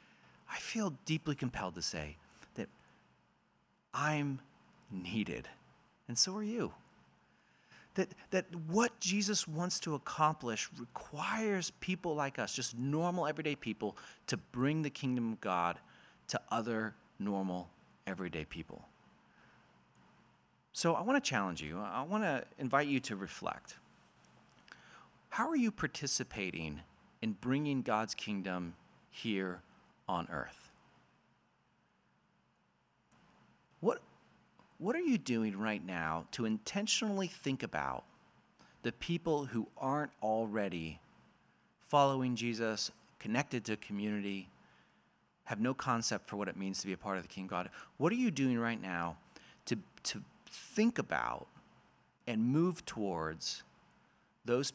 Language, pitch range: English, 95-155 Hz